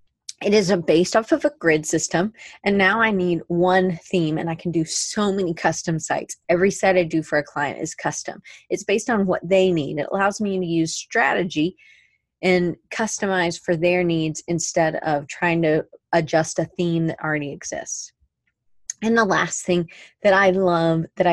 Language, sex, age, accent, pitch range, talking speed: English, female, 30-49, American, 165-195 Hz, 190 wpm